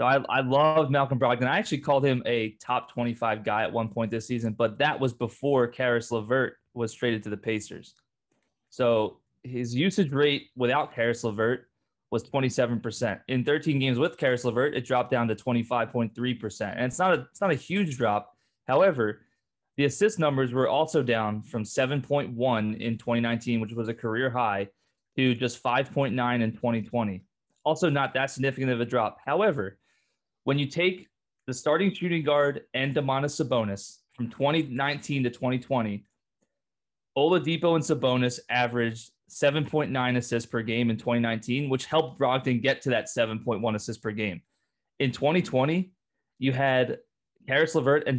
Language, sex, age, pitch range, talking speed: English, male, 20-39, 115-140 Hz, 155 wpm